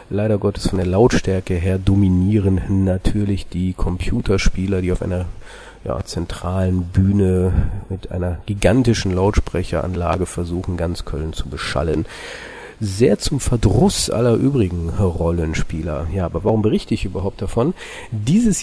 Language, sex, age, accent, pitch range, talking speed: German, male, 40-59, German, 90-110 Hz, 125 wpm